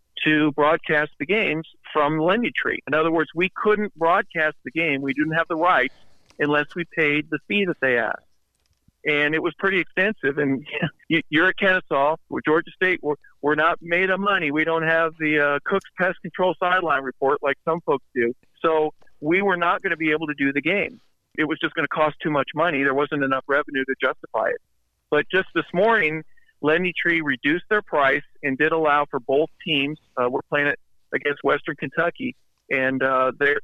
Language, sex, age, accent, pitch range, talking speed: English, male, 50-69, American, 140-170 Hz, 195 wpm